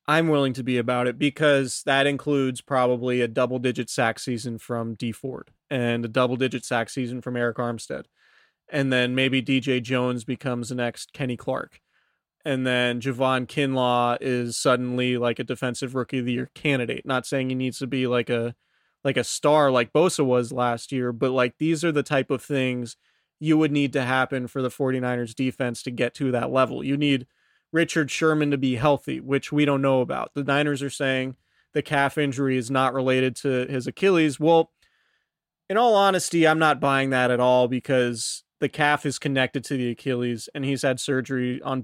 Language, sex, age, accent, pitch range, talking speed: English, male, 30-49, American, 125-140 Hz, 195 wpm